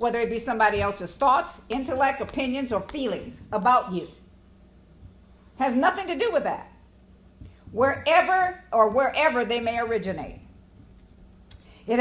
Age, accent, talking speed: 50-69, American, 125 wpm